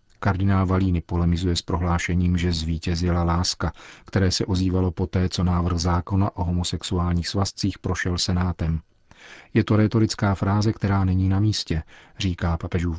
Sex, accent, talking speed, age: male, native, 140 wpm, 40-59